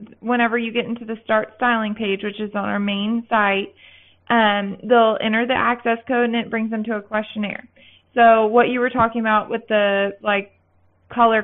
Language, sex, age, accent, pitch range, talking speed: English, female, 20-39, American, 210-235 Hz, 195 wpm